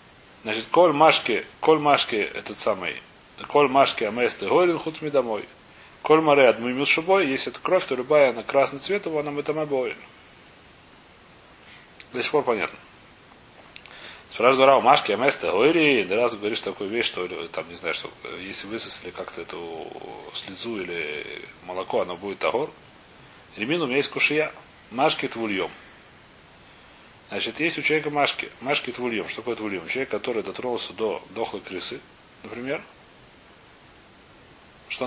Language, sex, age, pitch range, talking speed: Russian, male, 30-49, 125-160 Hz, 145 wpm